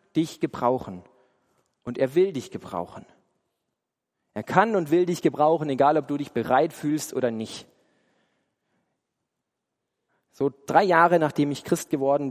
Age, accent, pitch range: 40-59, German, 125-155 Hz